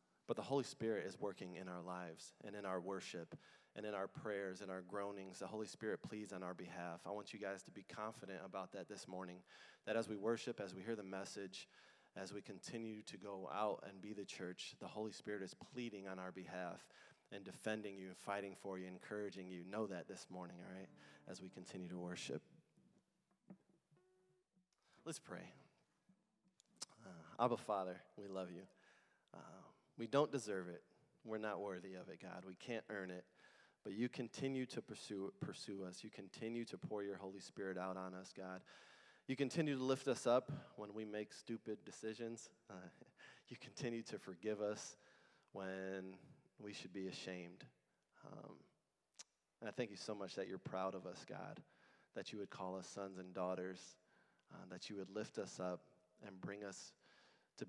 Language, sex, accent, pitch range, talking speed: English, male, American, 95-115 Hz, 185 wpm